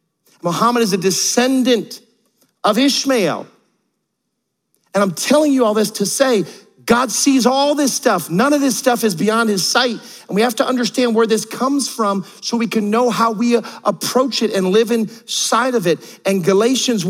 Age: 40-59